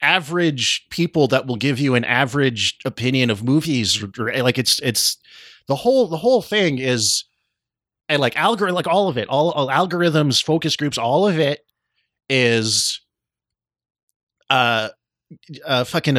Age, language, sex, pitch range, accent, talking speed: 30-49, English, male, 110-145 Hz, American, 145 wpm